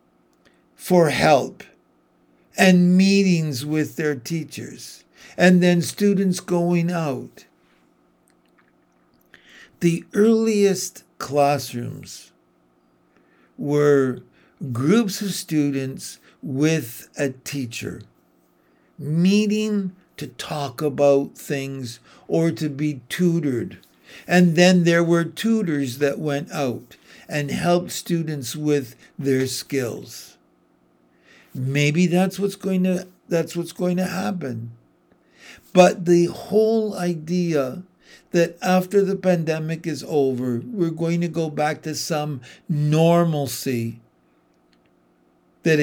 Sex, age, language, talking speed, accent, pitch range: male, 60-79, English, 95 wpm, American, 125-175 Hz